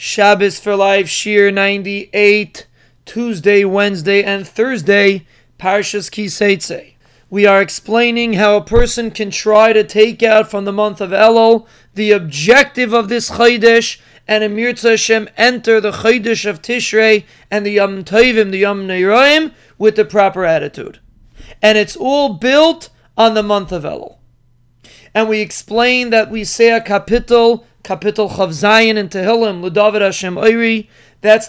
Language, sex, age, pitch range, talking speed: English, male, 30-49, 200-230 Hz, 140 wpm